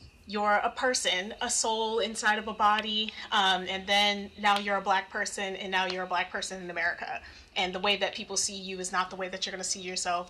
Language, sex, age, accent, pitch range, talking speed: English, female, 20-39, American, 190-240 Hz, 245 wpm